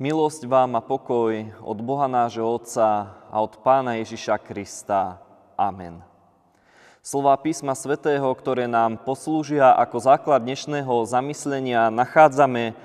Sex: male